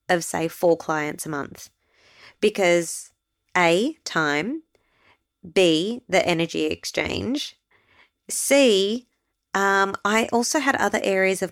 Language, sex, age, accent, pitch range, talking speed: English, female, 20-39, Australian, 170-210 Hz, 110 wpm